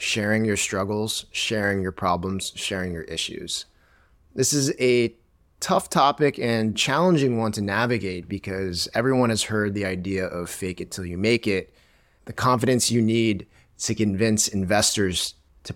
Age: 30-49